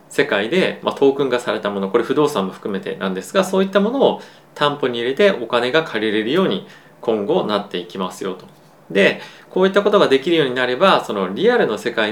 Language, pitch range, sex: Japanese, 110-150 Hz, male